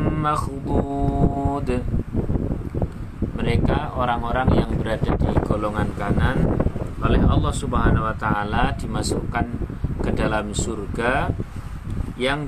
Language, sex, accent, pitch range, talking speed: Indonesian, male, native, 95-135 Hz, 85 wpm